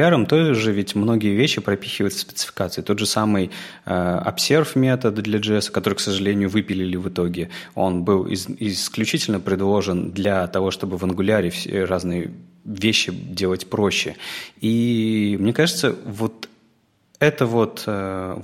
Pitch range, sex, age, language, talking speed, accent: 100-130 Hz, male, 30-49, Russian, 140 wpm, native